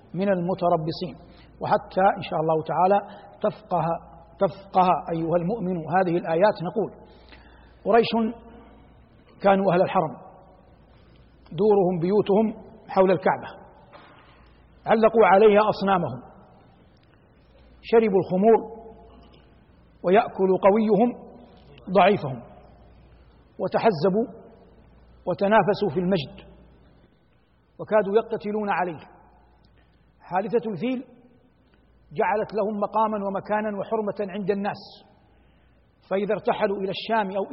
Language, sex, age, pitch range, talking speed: Arabic, male, 60-79, 185-225 Hz, 80 wpm